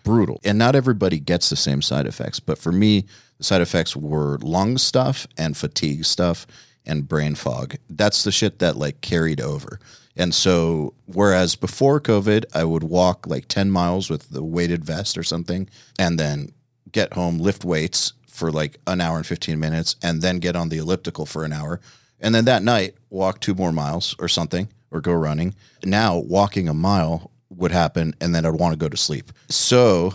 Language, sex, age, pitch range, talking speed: English, male, 30-49, 80-105 Hz, 195 wpm